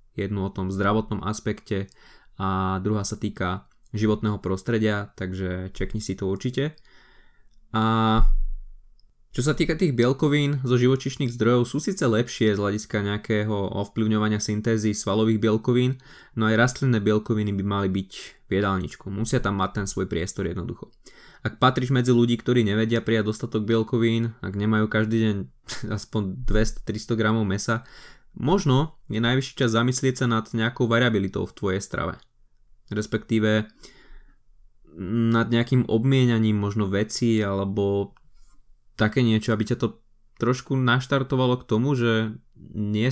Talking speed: 135 wpm